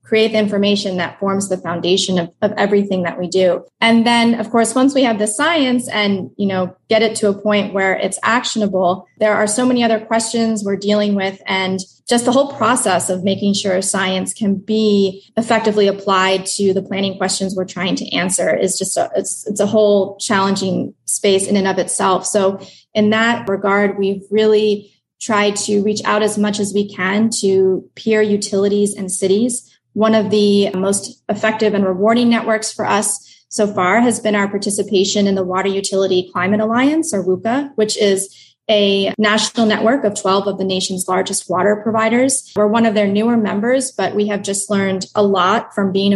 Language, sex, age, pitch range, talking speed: English, female, 20-39, 190-220 Hz, 190 wpm